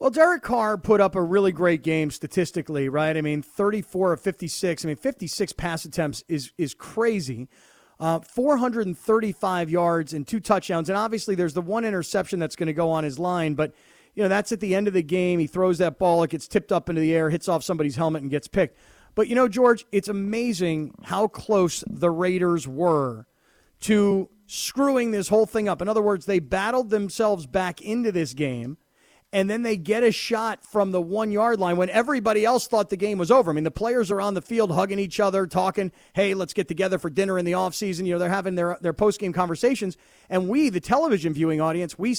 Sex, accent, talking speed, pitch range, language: male, American, 215 wpm, 170-215 Hz, English